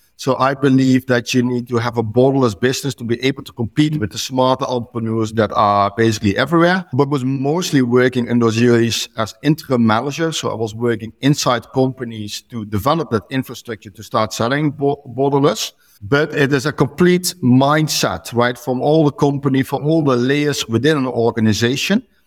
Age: 60-79